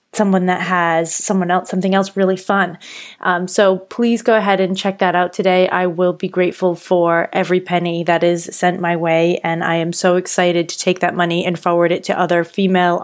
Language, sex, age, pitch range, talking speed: English, female, 20-39, 170-190 Hz, 210 wpm